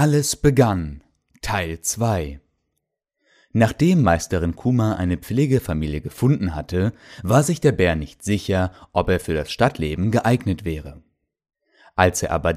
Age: 30-49